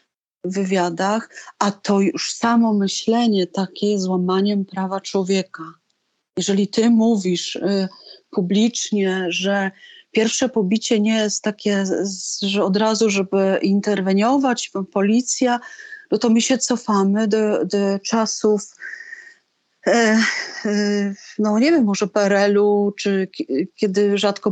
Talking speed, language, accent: 115 wpm, Polish, native